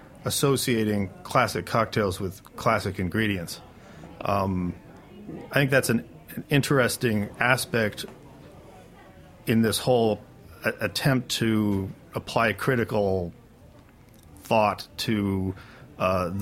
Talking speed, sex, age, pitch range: 90 wpm, male, 40-59, 100-115 Hz